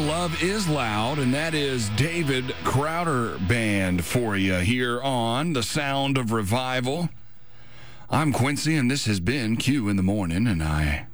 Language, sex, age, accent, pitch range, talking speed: English, male, 40-59, American, 100-130 Hz, 155 wpm